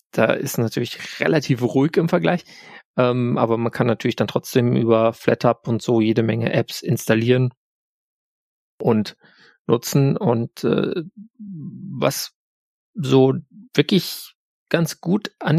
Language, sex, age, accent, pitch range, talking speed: German, male, 40-59, German, 125-160 Hz, 125 wpm